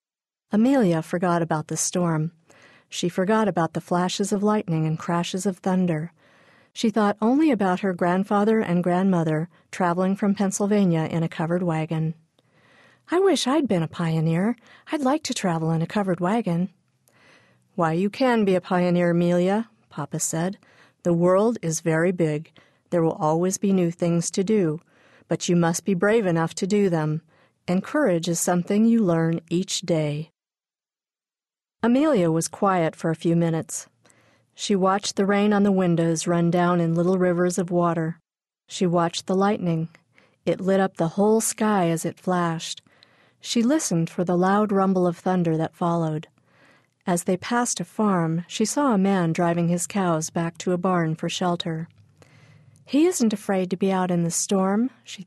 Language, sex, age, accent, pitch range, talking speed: English, female, 50-69, American, 165-205 Hz, 170 wpm